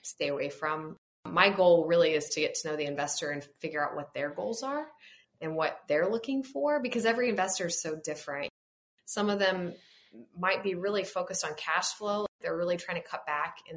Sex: female